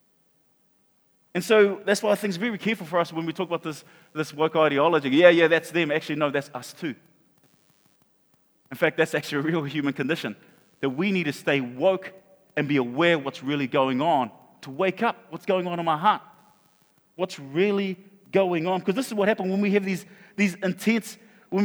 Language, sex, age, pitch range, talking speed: English, male, 30-49, 145-215 Hz, 195 wpm